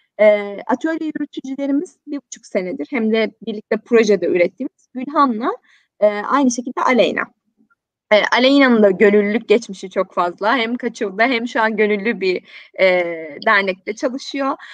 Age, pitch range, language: 20-39, 220-290 Hz, Turkish